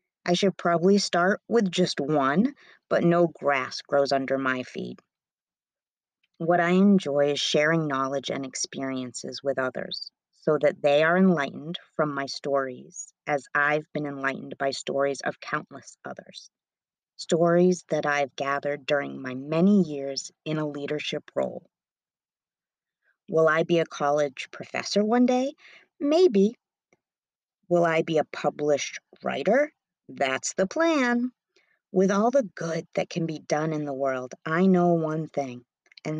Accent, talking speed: American, 145 wpm